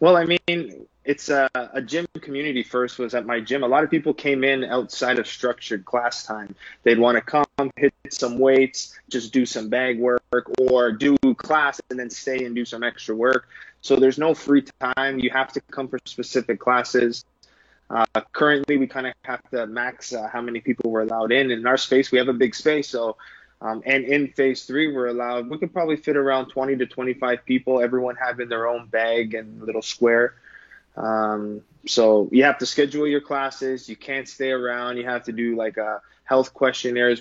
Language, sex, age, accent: English, male, 20-39, American